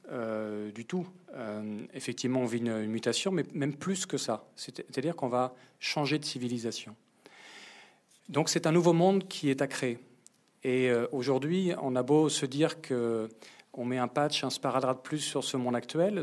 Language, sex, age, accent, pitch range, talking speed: French, male, 40-59, French, 125-150 Hz, 190 wpm